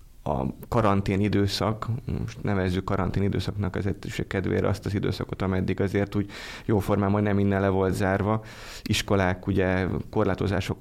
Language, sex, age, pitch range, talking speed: Hungarian, male, 20-39, 95-110 Hz, 140 wpm